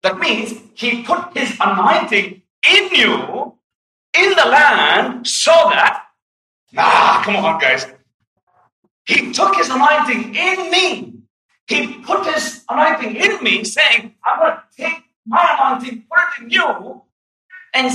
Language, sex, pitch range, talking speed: English, male, 230-370 Hz, 135 wpm